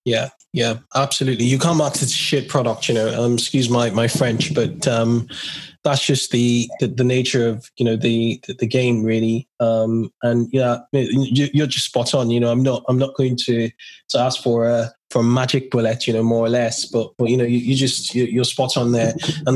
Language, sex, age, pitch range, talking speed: English, male, 20-39, 115-140 Hz, 220 wpm